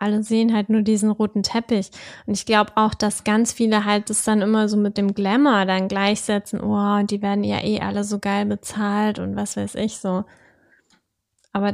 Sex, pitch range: female, 205-230 Hz